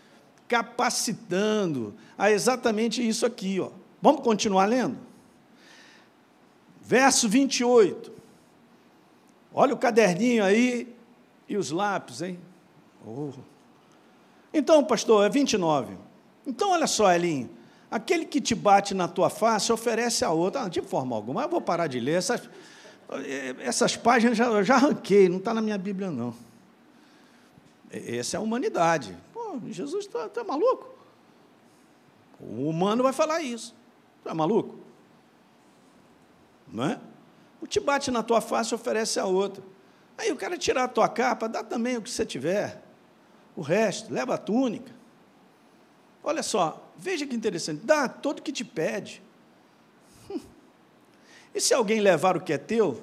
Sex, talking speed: male, 145 wpm